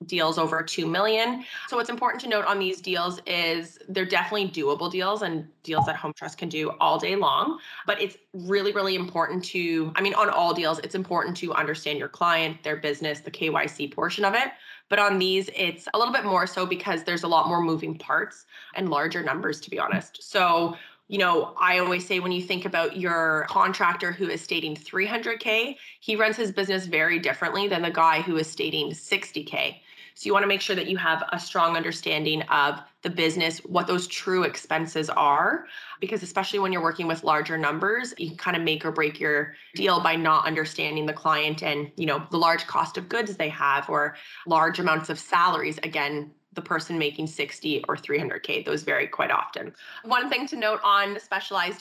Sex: female